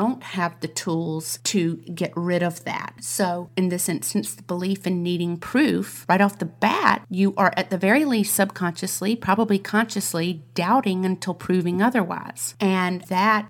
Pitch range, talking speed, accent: 170-200 Hz, 160 wpm, American